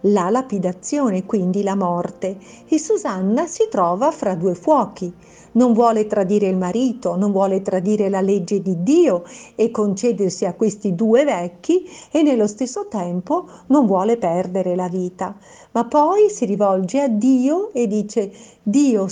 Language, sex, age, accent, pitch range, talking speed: Italian, female, 50-69, native, 185-245 Hz, 150 wpm